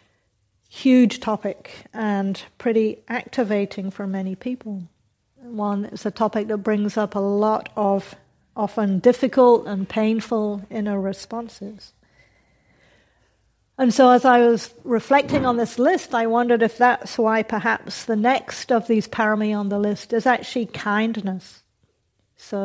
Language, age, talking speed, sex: English, 50-69, 135 wpm, female